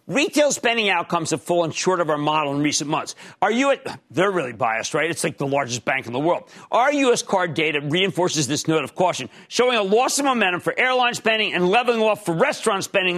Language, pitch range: English, 155-225 Hz